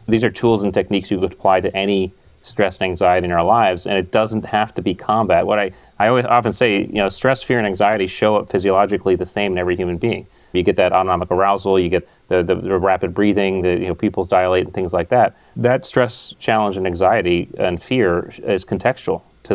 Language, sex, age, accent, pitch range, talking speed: English, male, 30-49, American, 95-110 Hz, 230 wpm